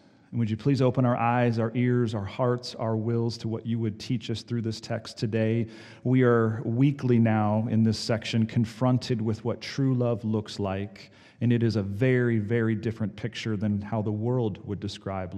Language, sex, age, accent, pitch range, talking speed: English, male, 40-59, American, 110-135 Hz, 200 wpm